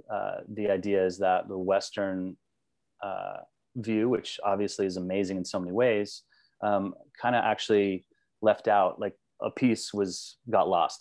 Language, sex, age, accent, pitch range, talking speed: English, male, 30-49, American, 95-105 Hz, 155 wpm